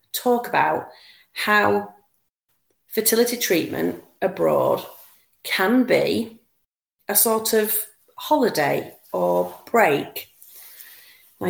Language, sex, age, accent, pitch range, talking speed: English, female, 30-49, British, 155-210 Hz, 80 wpm